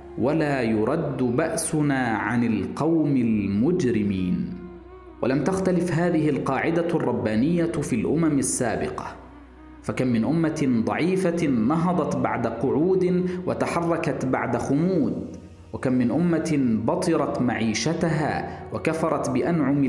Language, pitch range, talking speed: Arabic, 125-165 Hz, 95 wpm